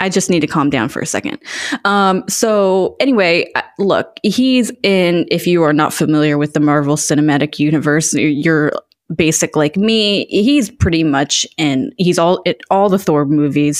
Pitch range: 150-185 Hz